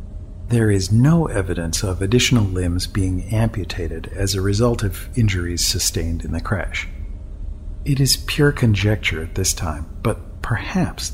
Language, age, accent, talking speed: English, 50-69, American, 145 wpm